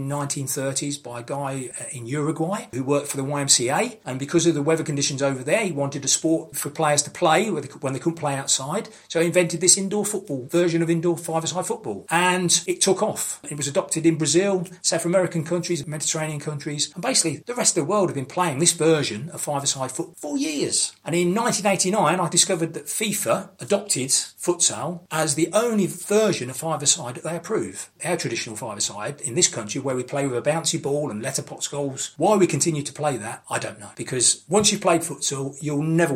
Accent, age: British, 40-59